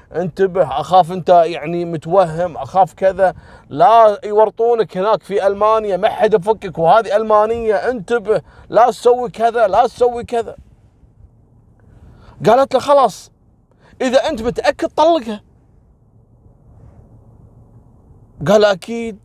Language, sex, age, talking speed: Arabic, male, 40-59, 105 wpm